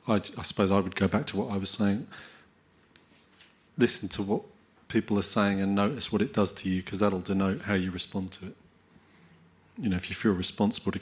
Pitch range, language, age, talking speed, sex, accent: 95-105 Hz, English, 30-49, 220 wpm, male, British